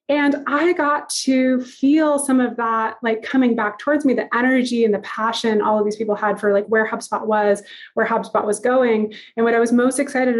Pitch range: 220-260 Hz